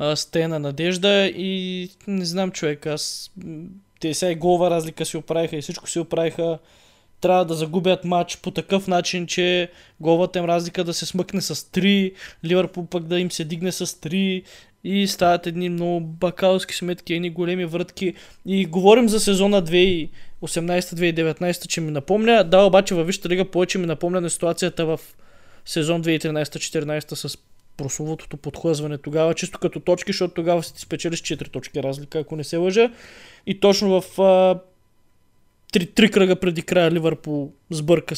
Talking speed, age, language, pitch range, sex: 165 wpm, 20-39, Bulgarian, 160-185 Hz, male